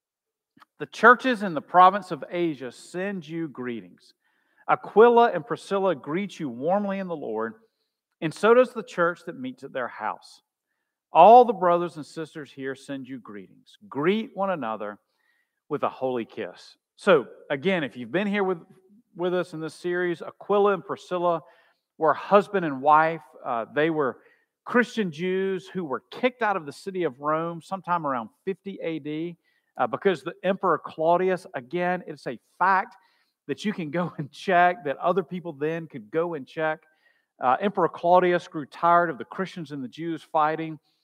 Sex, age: male, 50-69